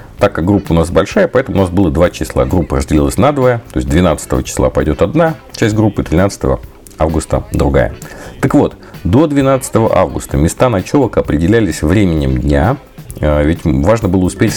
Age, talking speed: 50-69, 170 wpm